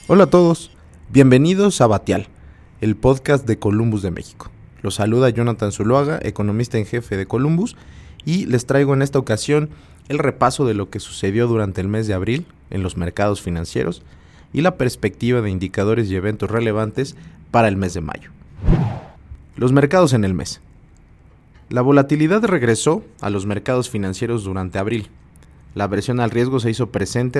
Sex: male